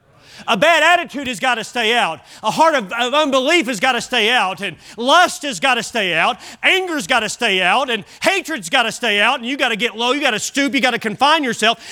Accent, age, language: American, 40-59, English